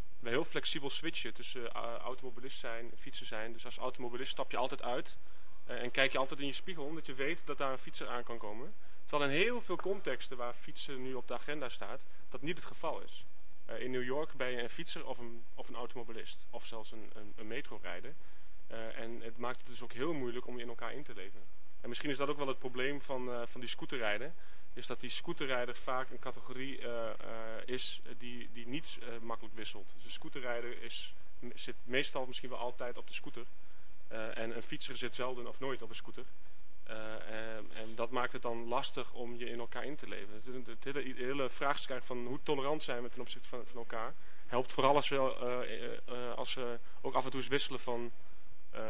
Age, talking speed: 30-49, 225 wpm